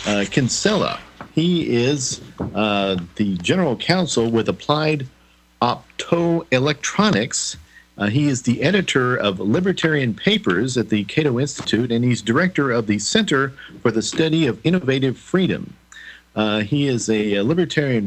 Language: English